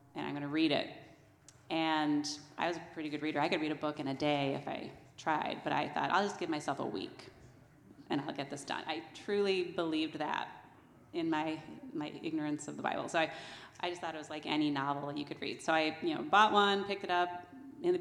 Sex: female